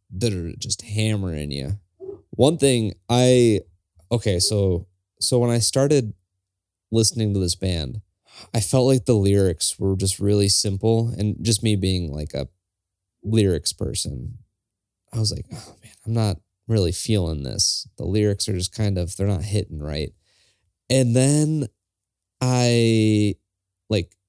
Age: 20-39